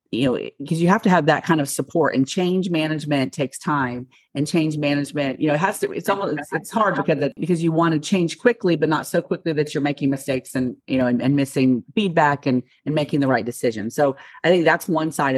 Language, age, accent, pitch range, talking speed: English, 40-59, American, 140-180 Hz, 250 wpm